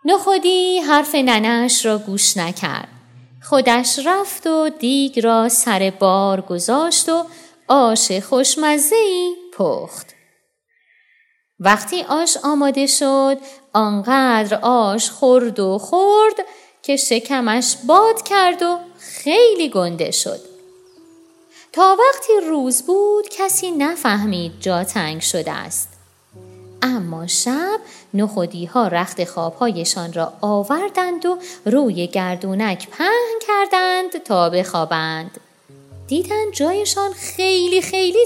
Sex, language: female, Persian